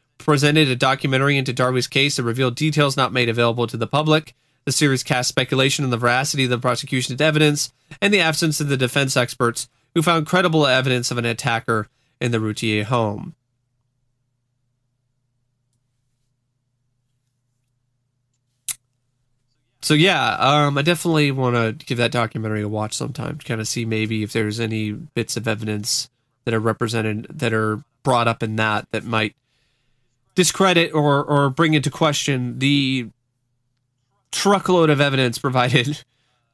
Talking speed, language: 150 wpm, English